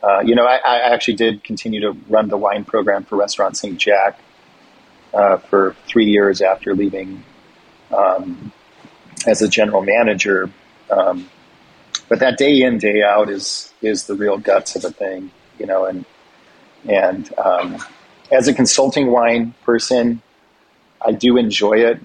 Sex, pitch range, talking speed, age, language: male, 100-120 Hz, 155 wpm, 40-59, English